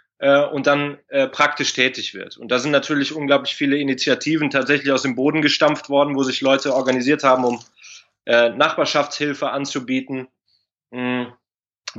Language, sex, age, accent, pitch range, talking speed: German, male, 20-39, German, 130-145 Hz, 145 wpm